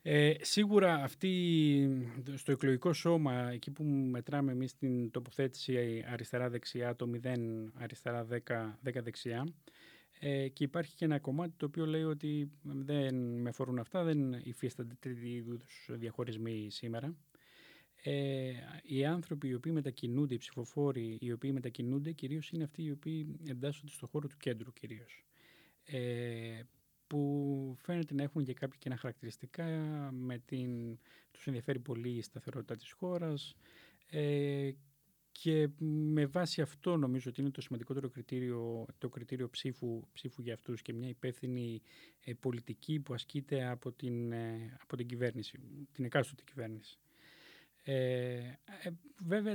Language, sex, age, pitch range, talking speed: Greek, male, 20-39, 120-145 Hz, 140 wpm